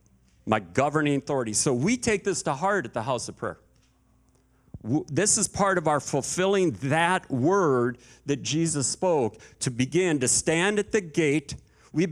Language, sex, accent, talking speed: English, male, American, 165 wpm